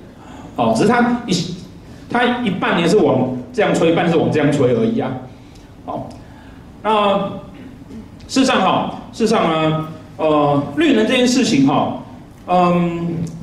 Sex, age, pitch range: male, 40-59, 135-210 Hz